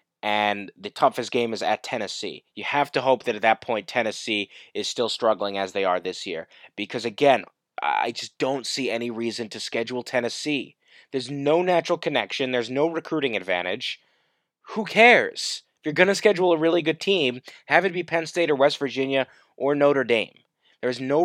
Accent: American